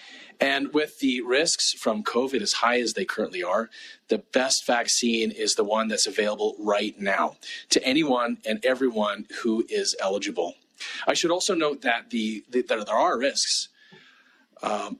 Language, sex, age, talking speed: English, male, 40-59, 155 wpm